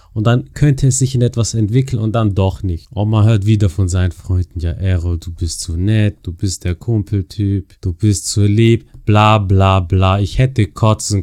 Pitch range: 100-115 Hz